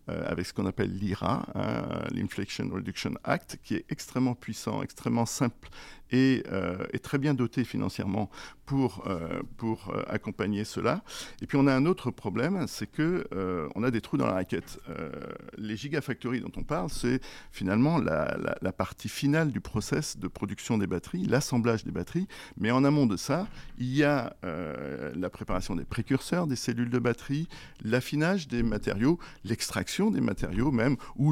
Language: French